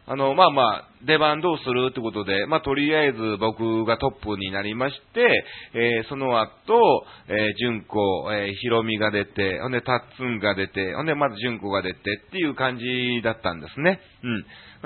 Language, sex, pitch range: Japanese, male, 105-135 Hz